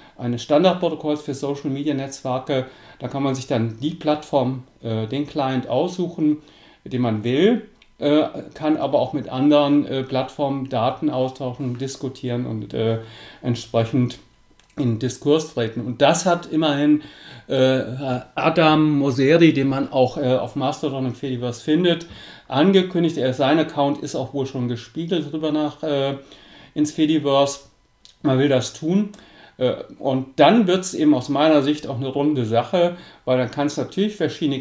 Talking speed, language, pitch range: 155 wpm, English, 125-150 Hz